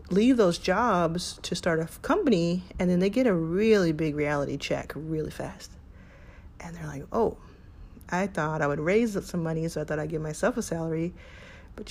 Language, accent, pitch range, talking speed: English, American, 155-205 Hz, 190 wpm